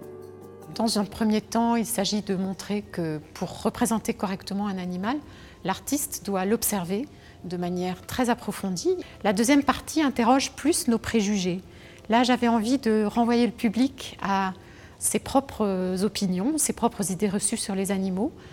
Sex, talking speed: female, 150 wpm